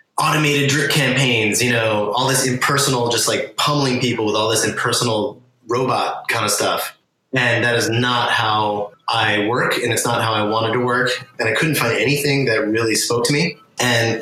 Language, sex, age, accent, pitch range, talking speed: English, male, 20-39, American, 115-140 Hz, 195 wpm